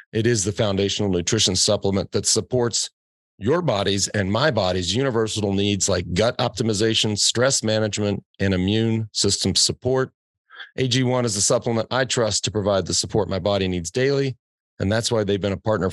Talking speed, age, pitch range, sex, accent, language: 170 wpm, 40-59, 100-125 Hz, male, American, English